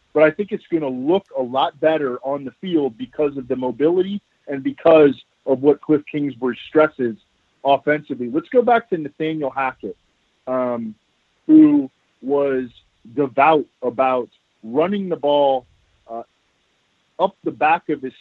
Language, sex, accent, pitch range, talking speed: English, male, American, 125-160 Hz, 150 wpm